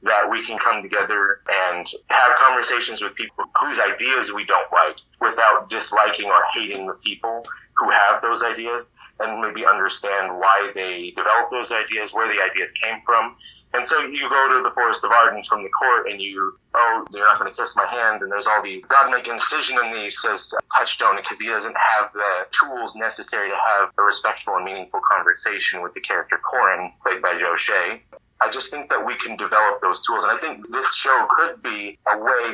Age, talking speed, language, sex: 30-49, 205 wpm, English, male